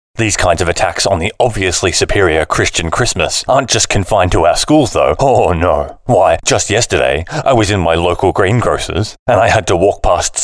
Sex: male